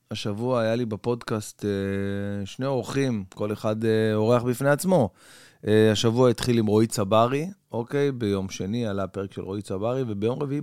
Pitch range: 105-130 Hz